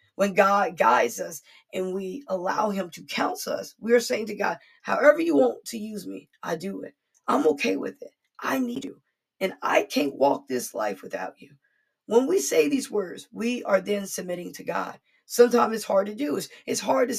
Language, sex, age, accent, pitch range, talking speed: English, female, 20-39, American, 195-255 Hz, 210 wpm